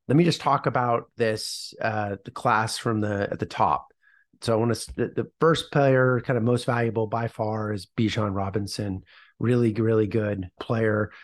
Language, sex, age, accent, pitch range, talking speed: English, male, 30-49, American, 105-130 Hz, 190 wpm